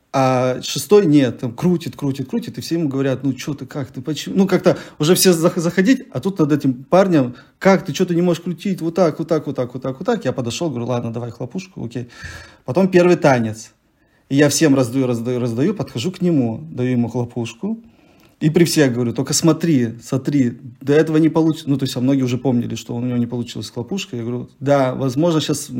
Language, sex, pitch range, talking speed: Russian, male, 125-175 Hz, 220 wpm